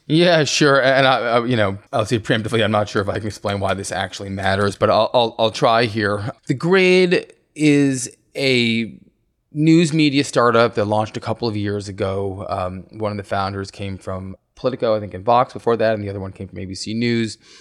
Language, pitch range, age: English, 100-130 Hz, 20-39